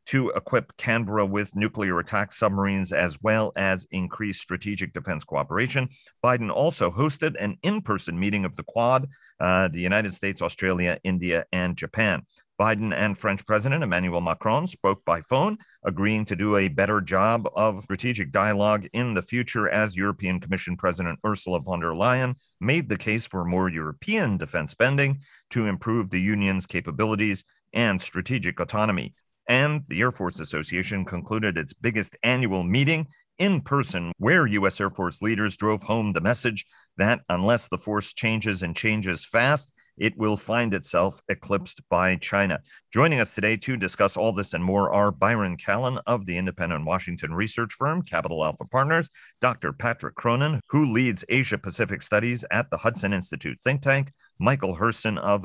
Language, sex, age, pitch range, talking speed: English, male, 40-59, 90-115 Hz, 160 wpm